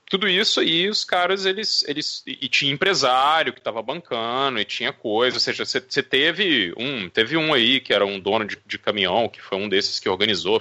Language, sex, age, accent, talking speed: Portuguese, male, 30-49, Brazilian, 210 wpm